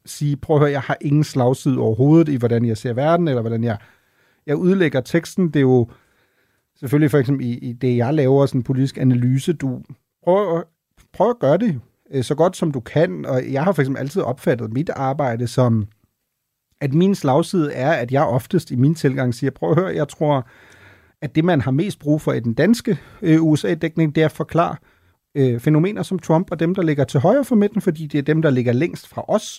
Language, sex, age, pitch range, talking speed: Danish, male, 30-49, 130-165 Hz, 215 wpm